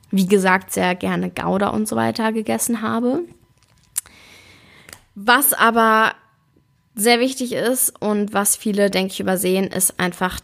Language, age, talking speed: German, 20-39, 130 wpm